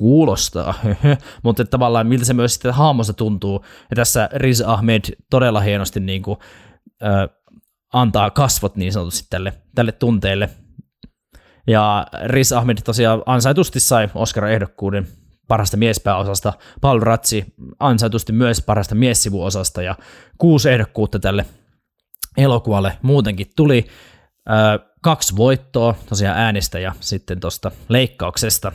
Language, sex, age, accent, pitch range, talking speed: Finnish, male, 20-39, native, 100-125 Hz, 120 wpm